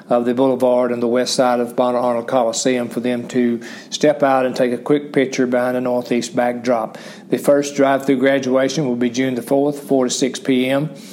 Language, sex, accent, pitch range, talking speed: English, male, American, 125-140 Hz, 205 wpm